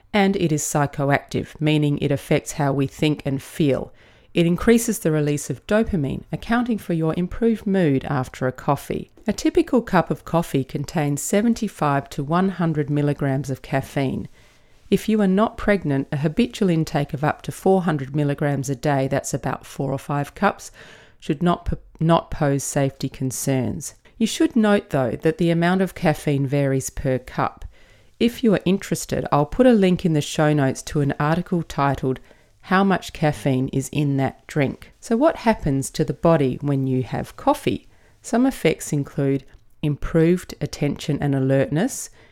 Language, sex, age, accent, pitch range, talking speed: English, female, 40-59, Australian, 140-190 Hz, 165 wpm